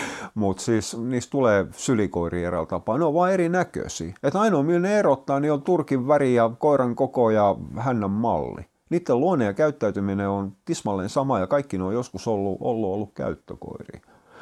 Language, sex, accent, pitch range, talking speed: Finnish, male, native, 90-120 Hz, 170 wpm